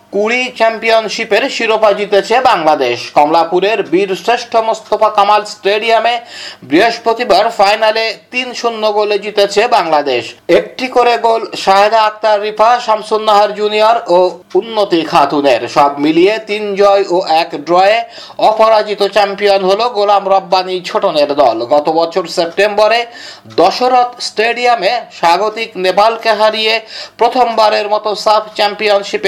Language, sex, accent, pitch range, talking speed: Bengali, male, native, 200-225 Hz, 40 wpm